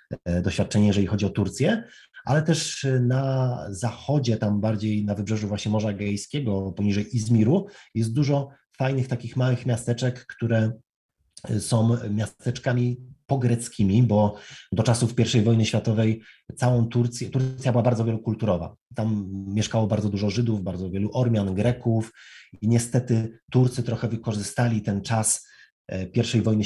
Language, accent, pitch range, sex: Polish, native, 100-120 Hz, male